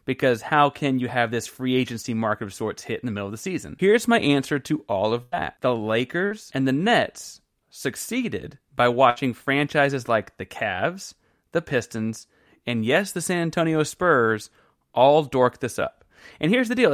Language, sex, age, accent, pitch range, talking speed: English, male, 30-49, American, 125-175 Hz, 190 wpm